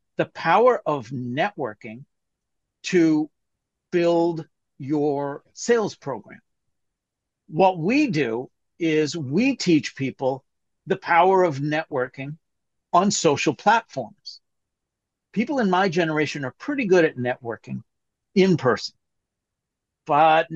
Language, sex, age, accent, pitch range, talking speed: English, male, 60-79, American, 135-185 Hz, 100 wpm